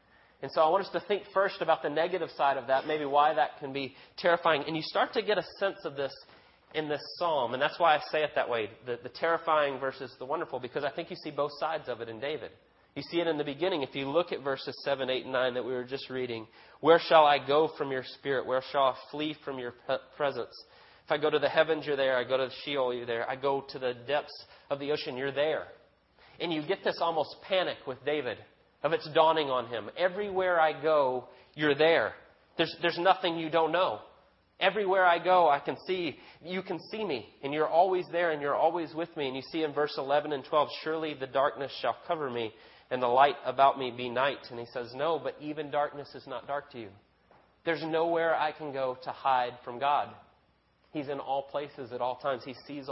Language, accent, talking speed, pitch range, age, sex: English, American, 240 wpm, 135-165 Hz, 30-49, male